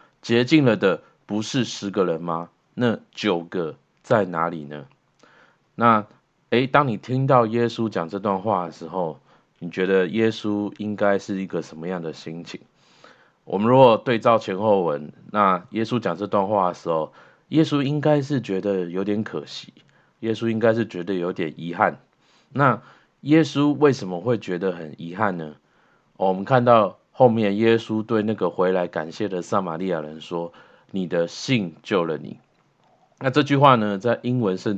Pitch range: 90-120 Hz